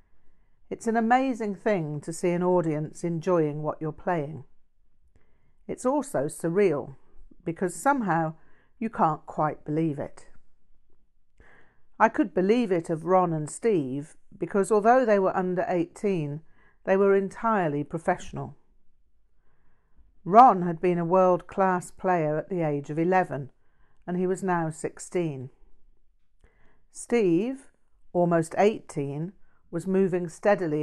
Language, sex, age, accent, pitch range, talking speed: English, female, 50-69, British, 150-190 Hz, 120 wpm